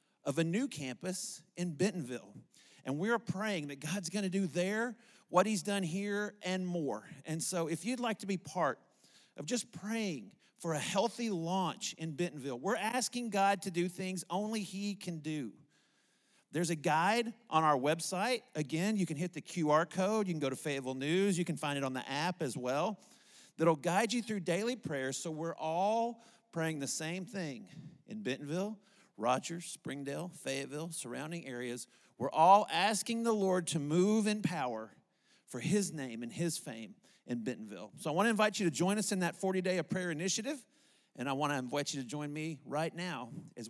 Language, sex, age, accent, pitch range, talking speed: English, male, 40-59, American, 145-195 Hz, 190 wpm